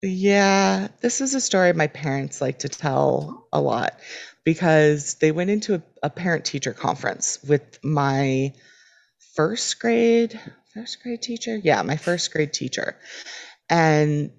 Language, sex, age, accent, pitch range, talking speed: English, female, 30-49, American, 140-185 Hz, 140 wpm